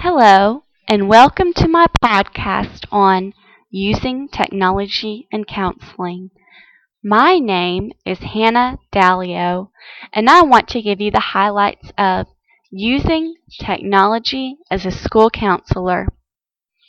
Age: 20-39